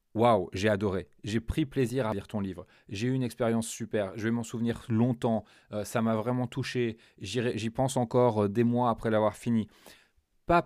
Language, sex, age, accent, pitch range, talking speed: French, male, 30-49, French, 105-125 Hz, 190 wpm